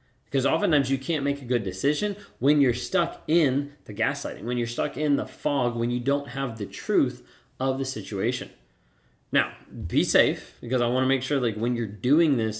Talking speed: 205 wpm